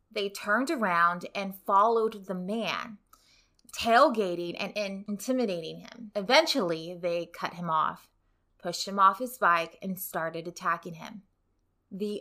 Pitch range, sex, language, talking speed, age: 175-220 Hz, female, English, 130 wpm, 20-39